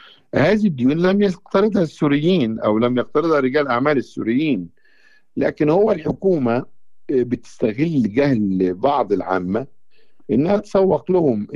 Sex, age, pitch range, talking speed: male, 50-69, 105-145 Hz, 110 wpm